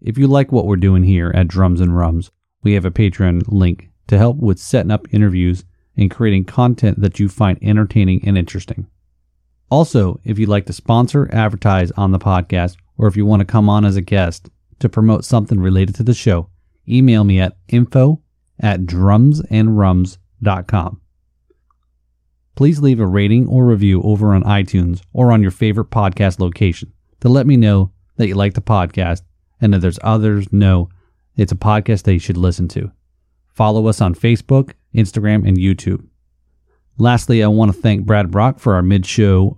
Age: 30-49